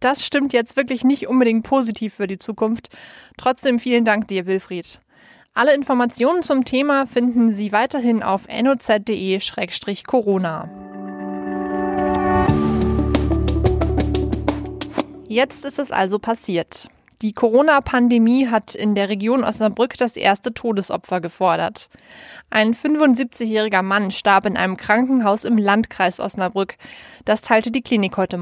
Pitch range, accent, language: 200-255 Hz, German, German